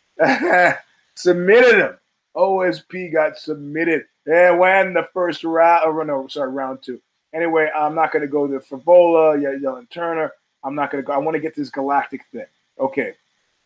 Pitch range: 125-165 Hz